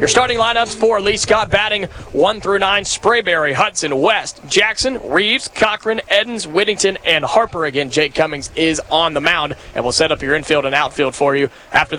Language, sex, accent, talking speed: English, male, American, 190 wpm